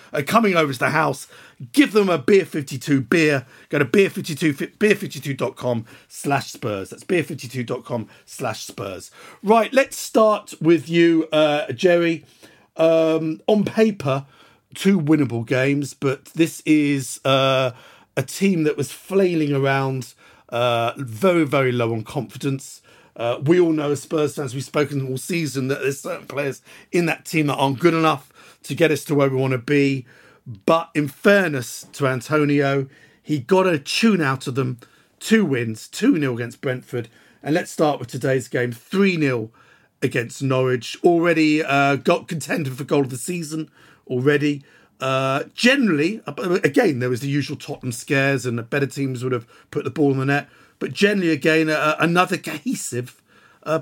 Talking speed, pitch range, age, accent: 160 wpm, 130-165 Hz, 50-69, British